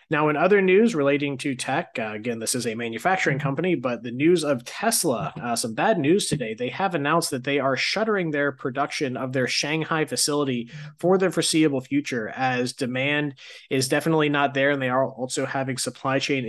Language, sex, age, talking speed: English, male, 20-39, 195 wpm